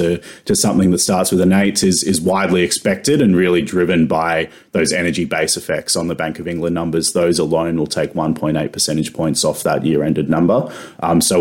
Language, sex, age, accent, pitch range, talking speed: English, male, 30-49, Australian, 80-90 Hz, 220 wpm